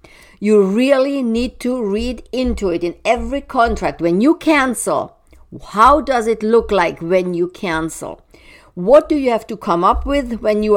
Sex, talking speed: female, 175 wpm